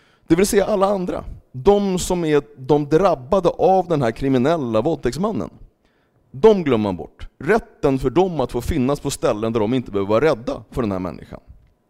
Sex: male